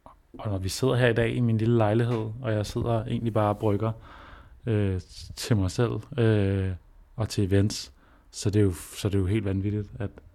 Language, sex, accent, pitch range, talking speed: Danish, male, native, 100-115 Hz, 215 wpm